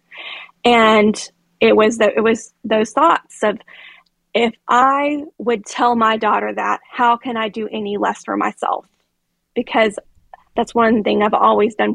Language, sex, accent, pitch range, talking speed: English, female, American, 210-245 Hz, 155 wpm